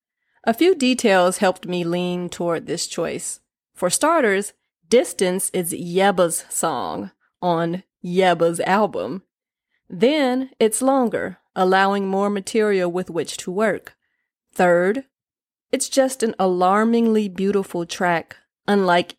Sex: female